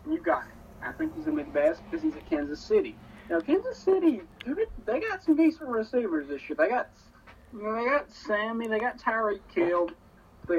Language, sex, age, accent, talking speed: English, male, 30-49, American, 185 wpm